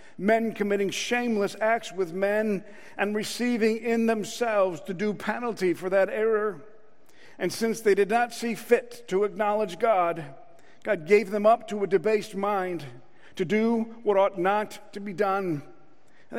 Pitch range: 190-225 Hz